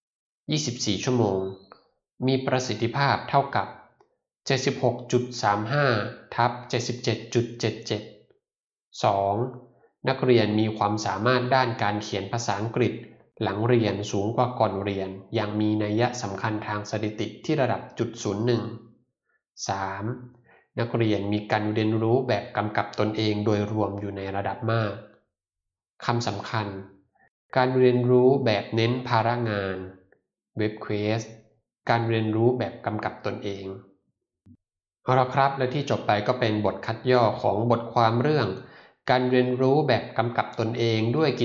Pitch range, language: 105-120 Hz, Thai